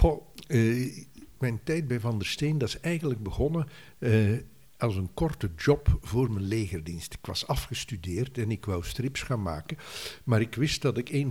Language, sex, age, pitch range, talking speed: Dutch, male, 60-79, 110-130 Hz, 175 wpm